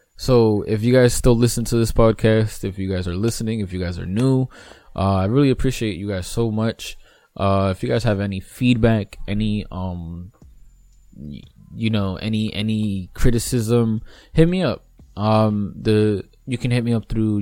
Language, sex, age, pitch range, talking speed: English, male, 20-39, 95-110 Hz, 180 wpm